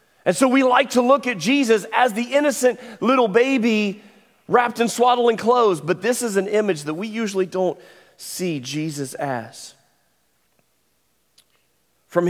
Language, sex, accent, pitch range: English, male, American, 155-200 Hz